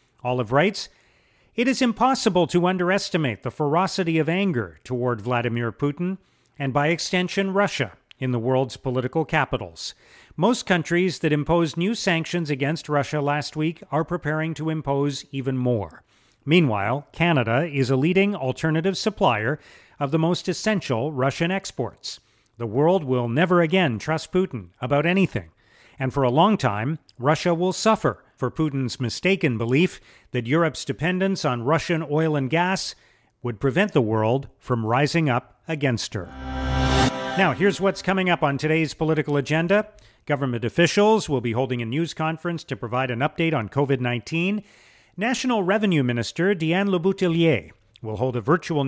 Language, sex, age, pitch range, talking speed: English, male, 40-59, 125-180 Hz, 150 wpm